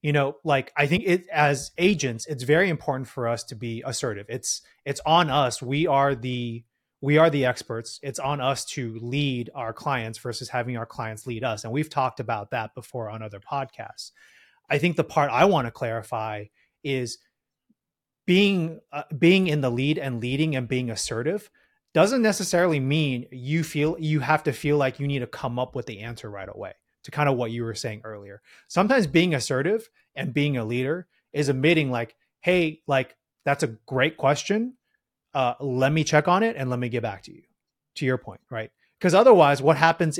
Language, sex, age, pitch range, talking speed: English, male, 30-49, 125-160 Hz, 200 wpm